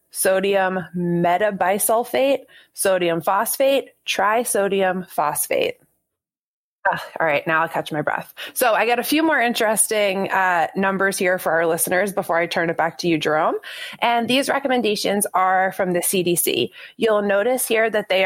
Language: English